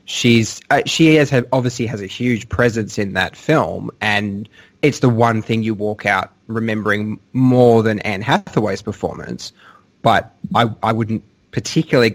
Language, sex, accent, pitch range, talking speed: English, male, Australian, 105-125 Hz, 155 wpm